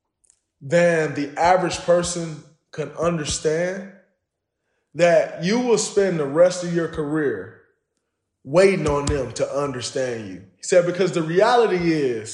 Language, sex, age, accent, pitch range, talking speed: English, male, 20-39, American, 155-210 Hz, 130 wpm